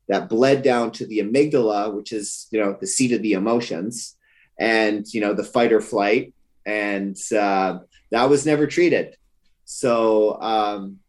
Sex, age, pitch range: male, 30-49, 105-130 Hz